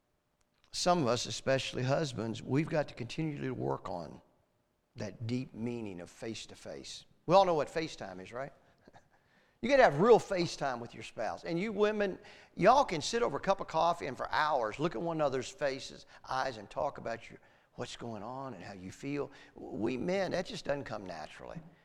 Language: English